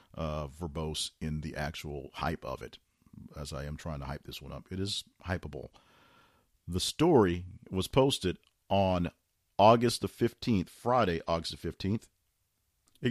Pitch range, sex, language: 85-120 Hz, male, English